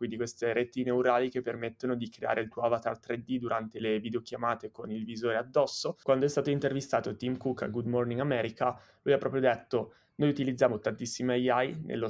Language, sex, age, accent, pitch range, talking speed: Italian, male, 20-39, native, 115-125 Hz, 190 wpm